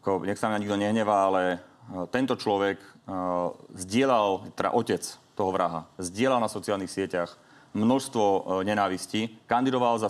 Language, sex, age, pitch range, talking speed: Slovak, male, 30-49, 100-115 Hz, 145 wpm